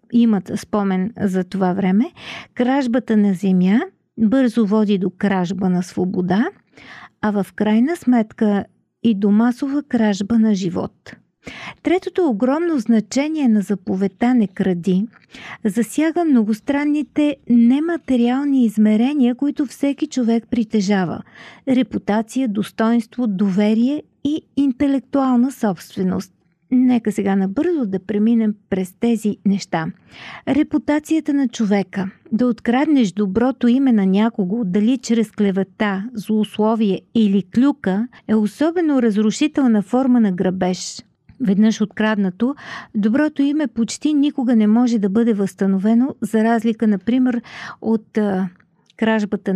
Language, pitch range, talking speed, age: Bulgarian, 200-255 Hz, 110 wpm, 40-59